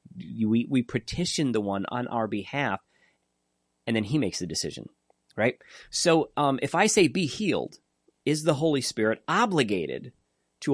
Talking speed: 160 wpm